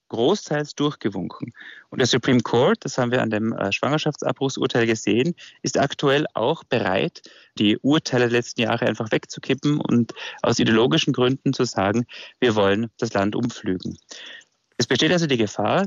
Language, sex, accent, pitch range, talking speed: German, male, German, 115-150 Hz, 150 wpm